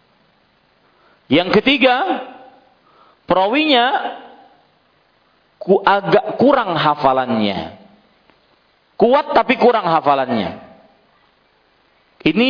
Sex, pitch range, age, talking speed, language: male, 145-215 Hz, 40-59, 60 wpm, Malay